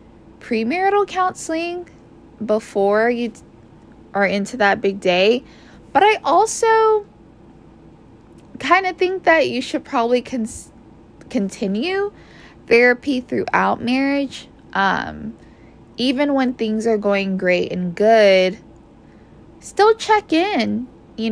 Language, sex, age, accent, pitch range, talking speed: English, female, 10-29, American, 200-280 Hz, 100 wpm